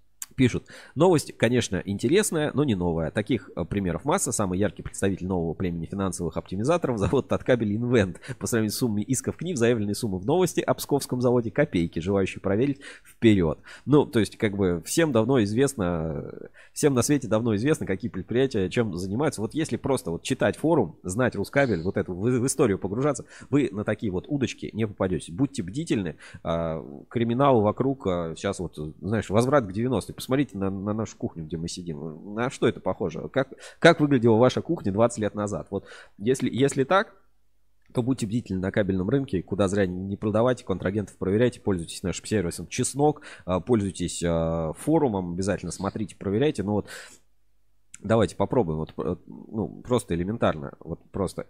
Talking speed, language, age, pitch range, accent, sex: 160 wpm, Russian, 20-39, 95-125 Hz, native, male